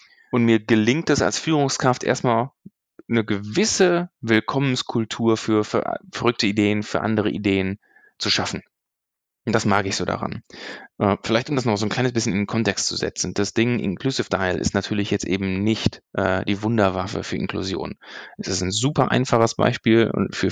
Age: 20-39